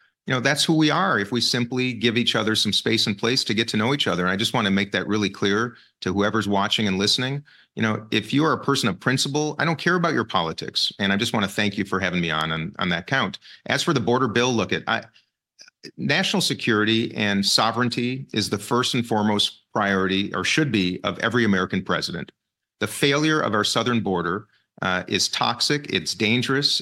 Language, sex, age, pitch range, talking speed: English, male, 40-59, 100-125 Hz, 230 wpm